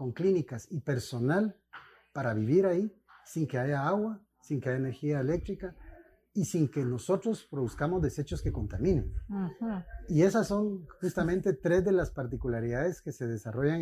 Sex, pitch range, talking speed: male, 130-175 Hz, 150 wpm